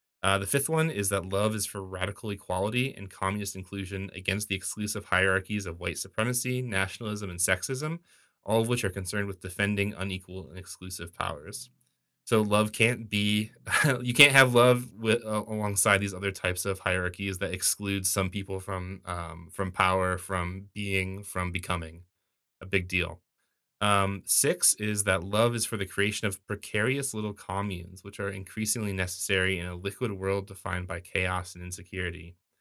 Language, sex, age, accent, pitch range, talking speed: English, male, 20-39, American, 95-105 Hz, 165 wpm